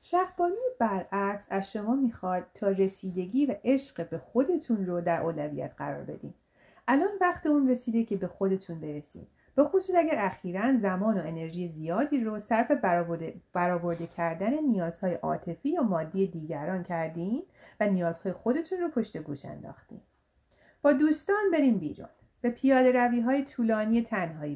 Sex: female